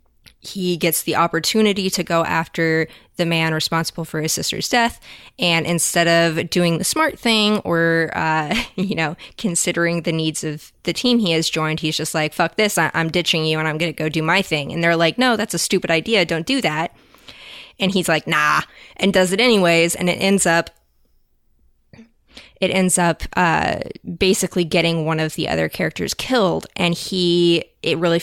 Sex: female